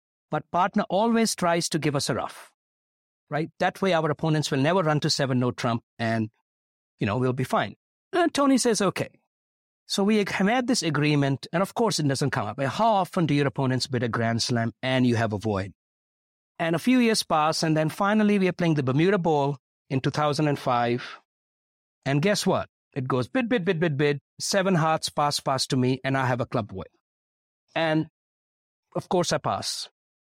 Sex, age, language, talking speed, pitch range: male, 50-69, English, 200 wpm, 135-185 Hz